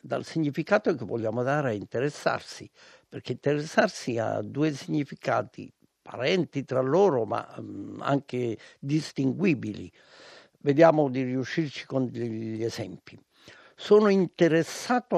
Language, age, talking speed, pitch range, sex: Italian, 60-79, 105 wpm, 120-150 Hz, male